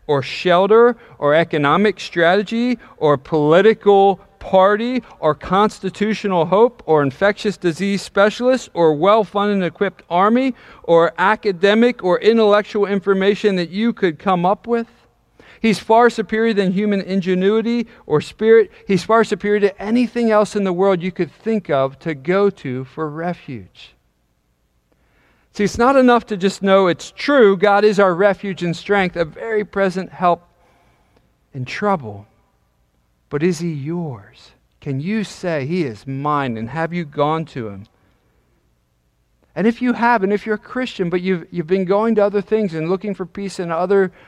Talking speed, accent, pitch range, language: 155 wpm, American, 155-210 Hz, English